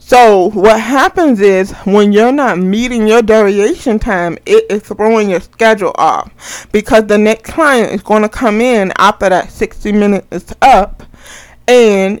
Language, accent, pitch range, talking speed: English, American, 195-235 Hz, 160 wpm